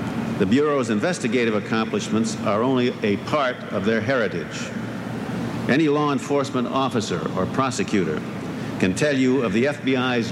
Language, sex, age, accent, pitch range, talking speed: English, male, 60-79, American, 115-140 Hz, 135 wpm